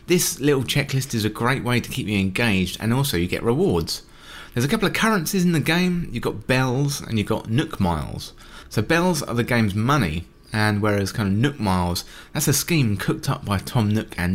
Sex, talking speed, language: male, 220 wpm, English